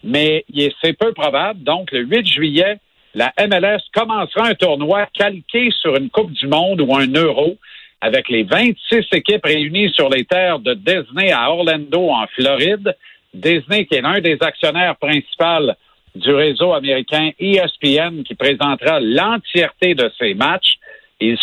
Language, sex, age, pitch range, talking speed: French, male, 50-69, 155-210 Hz, 150 wpm